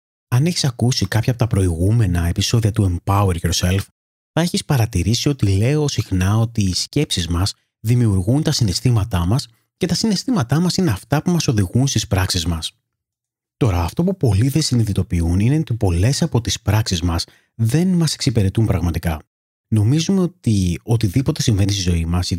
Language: Greek